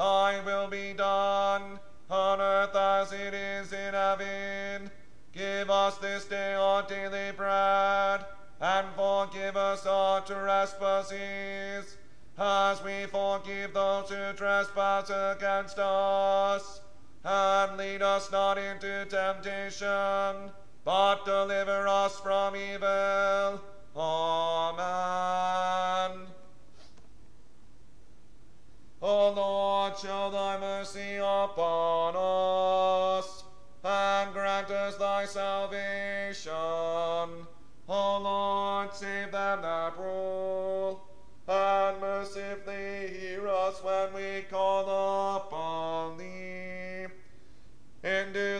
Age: 40-59